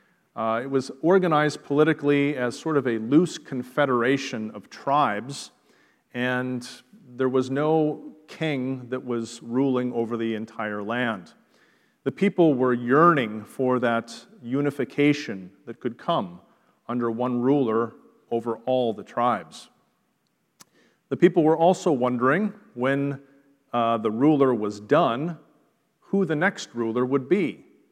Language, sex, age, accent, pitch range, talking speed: English, male, 40-59, American, 120-145 Hz, 125 wpm